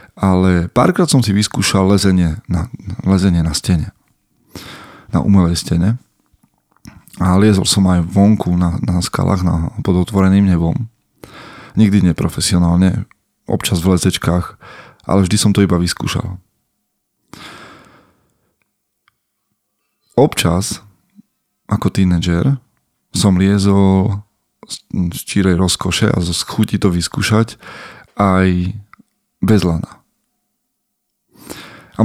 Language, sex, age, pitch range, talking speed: Slovak, male, 20-39, 90-105 Hz, 100 wpm